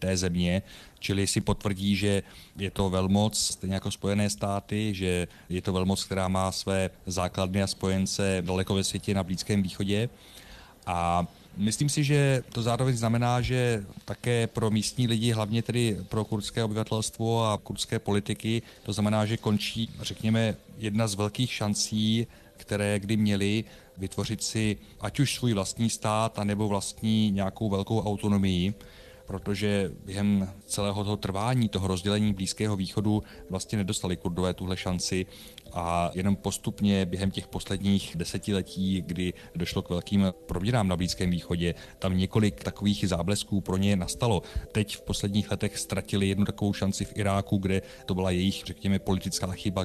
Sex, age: male, 30-49